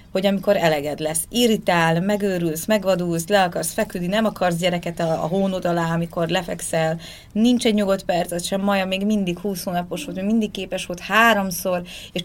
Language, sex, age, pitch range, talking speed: Hungarian, female, 30-49, 170-210 Hz, 175 wpm